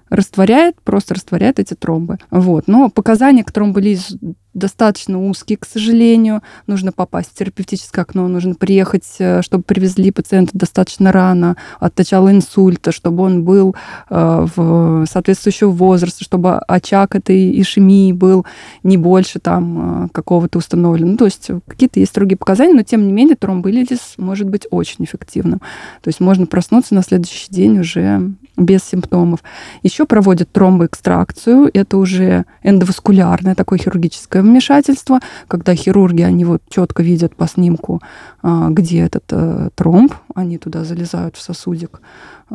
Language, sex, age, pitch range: Russian, female, 20-39, 175-205 Hz